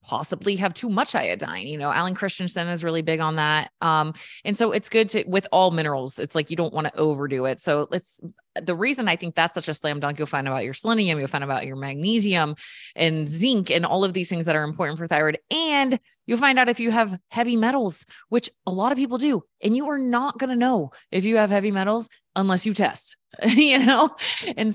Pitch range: 155-215 Hz